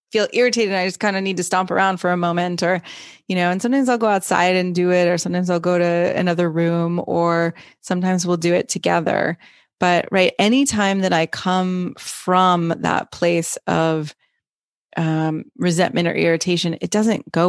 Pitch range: 175-195 Hz